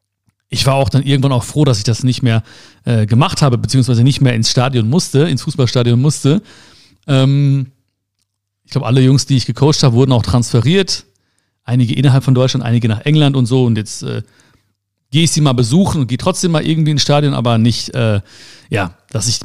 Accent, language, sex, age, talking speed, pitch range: German, German, male, 40-59, 205 wpm, 115-150 Hz